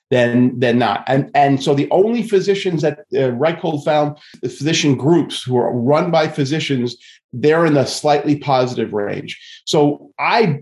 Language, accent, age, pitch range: English, American, 40-59, 145-195 Hz